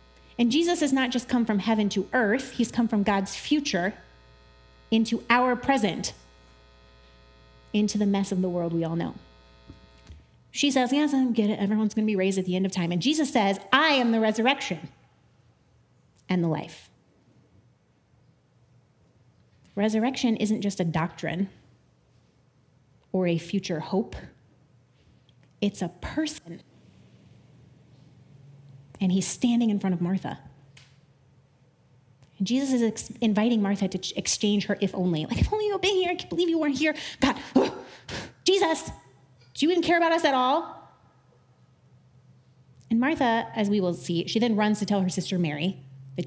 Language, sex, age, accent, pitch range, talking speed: English, female, 30-49, American, 135-230 Hz, 155 wpm